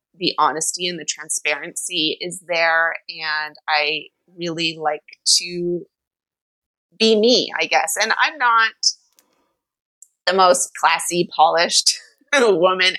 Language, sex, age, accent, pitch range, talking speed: English, female, 30-49, American, 165-200 Hz, 110 wpm